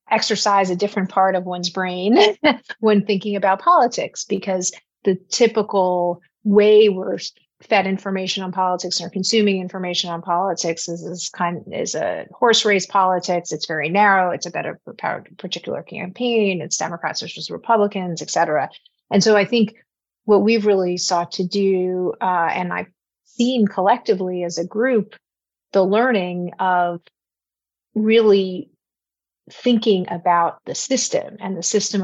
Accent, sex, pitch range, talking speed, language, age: American, female, 175-210 Hz, 145 wpm, English, 30-49